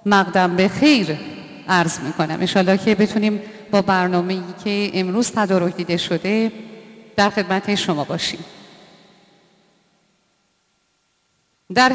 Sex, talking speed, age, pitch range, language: female, 95 wpm, 40-59, 185-245 Hz, Persian